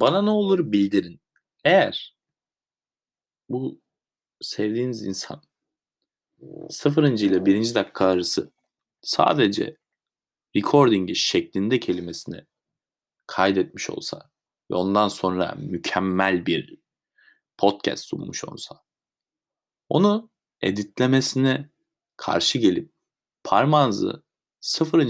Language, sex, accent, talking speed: Turkish, male, native, 80 wpm